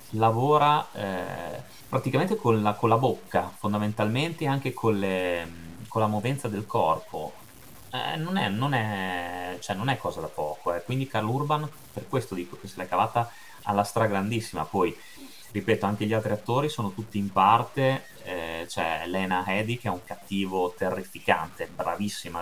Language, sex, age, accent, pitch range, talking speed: Italian, male, 30-49, native, 95-115 Hz, 170 wpm